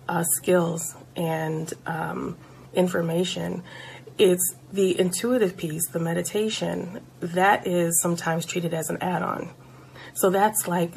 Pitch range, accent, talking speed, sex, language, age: 180-220 Hz, American, 115 wpm, female, English, 30-49